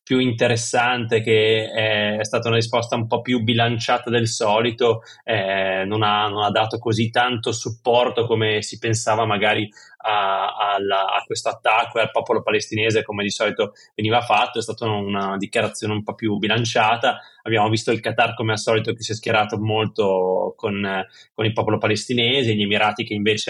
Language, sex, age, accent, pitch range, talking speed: Italian, male, 20-39, native, 105-115 Hz, 170 wpm